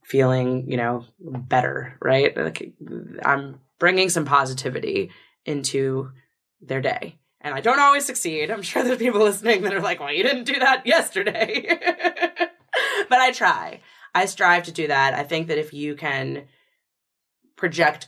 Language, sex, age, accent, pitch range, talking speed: English, female, 20-39, American, 135-185 Hz, 155 wpm